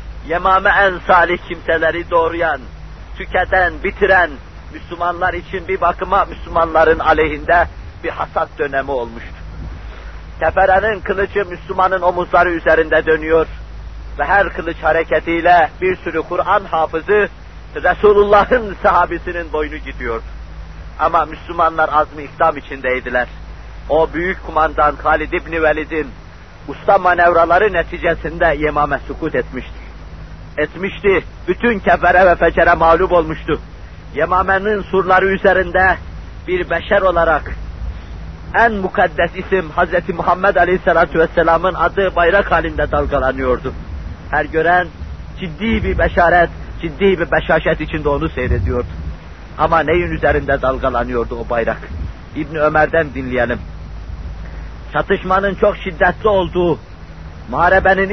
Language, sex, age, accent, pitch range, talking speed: Turkish, male, 50-69, native, 130-180 Hz, 105 wpm